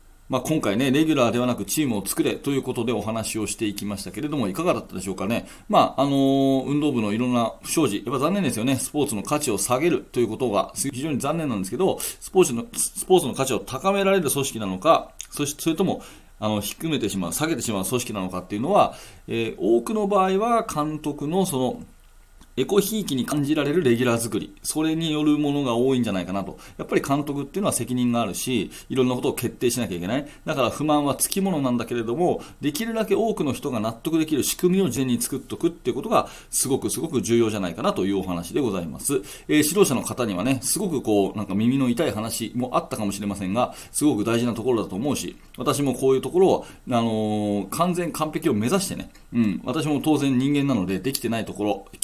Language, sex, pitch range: Japanese, male, 110-150 Hz